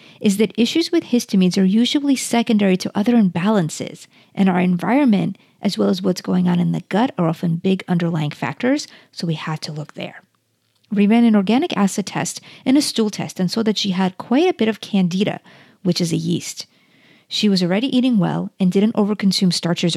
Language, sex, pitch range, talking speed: English, female, 180-225 Hz, 200 wpm